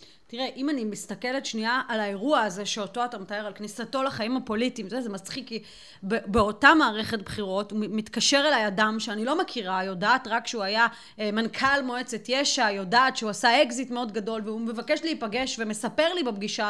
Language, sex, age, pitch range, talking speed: Hebrew, female, 30-49, 215-265 Hz, 175 wpm